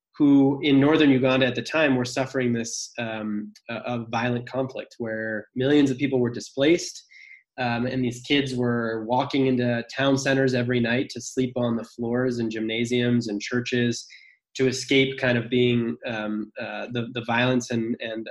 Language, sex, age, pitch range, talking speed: English, male, 20-39, 115-135 Hz, 175 wpm